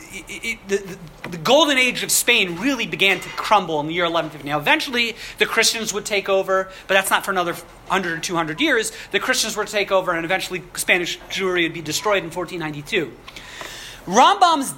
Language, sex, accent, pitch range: English, male, American, 165-225 Hz